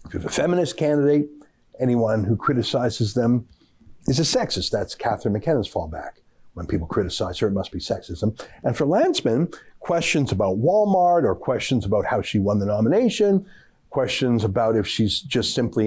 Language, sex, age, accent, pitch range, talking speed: English, male, 60-79, American, 115-165 Hz, 170 wpm